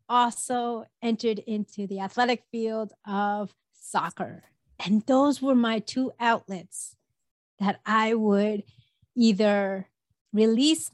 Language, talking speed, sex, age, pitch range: English, 105 wpm, female, 30-49, 195-240 Hz